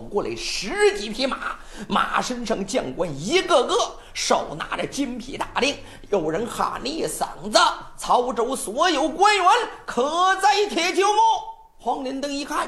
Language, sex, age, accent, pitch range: Chinese, male, 50-69, native, 245-360 Hz